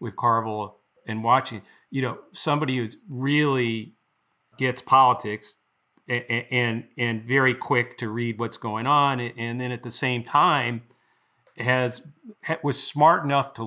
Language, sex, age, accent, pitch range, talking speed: English, male, 40-59, American, 125-155 Hz, 140 wpm